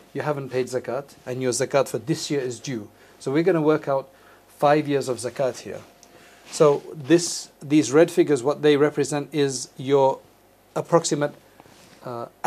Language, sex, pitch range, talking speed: English, male, 130-155 Hz, 165 wpm